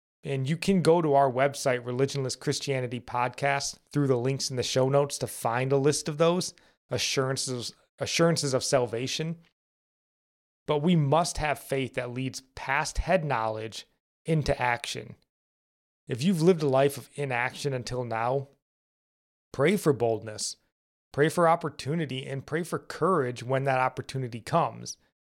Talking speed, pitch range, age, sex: 145 wpm, 120-145 Hz, 30-49, male